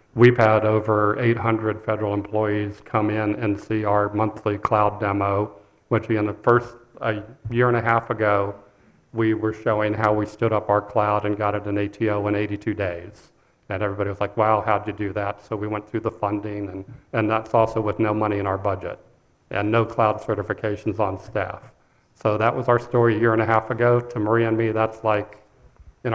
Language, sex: English, male